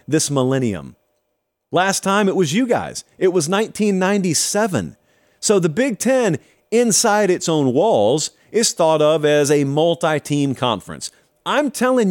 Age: 40-59